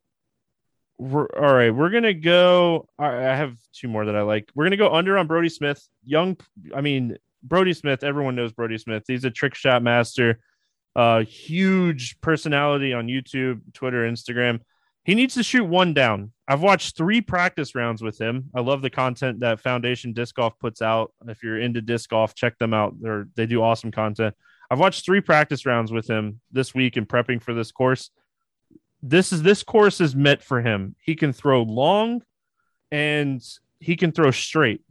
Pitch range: 120-165 Hz